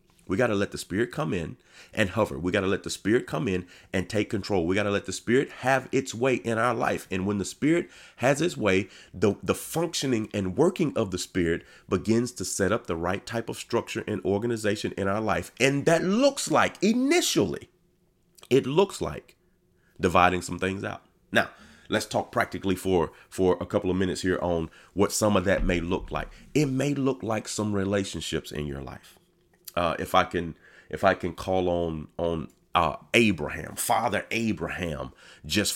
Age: 30-49